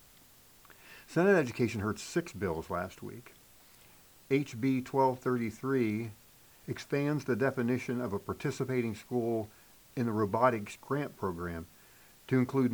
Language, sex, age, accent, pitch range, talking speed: English, male, 50-69, American, 100-130 Hz, 110 wpm